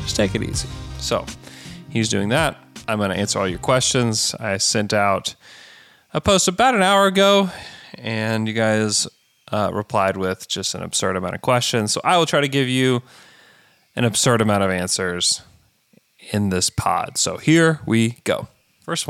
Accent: American